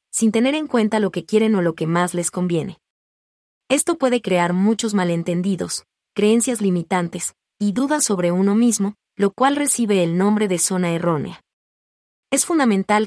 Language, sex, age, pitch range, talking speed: Spanish, female, 30-49, 180-225 Hz, 160 wpm